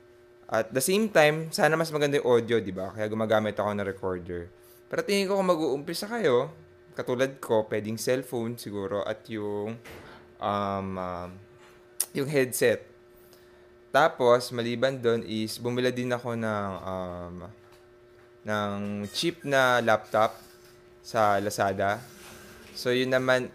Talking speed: 135 wpm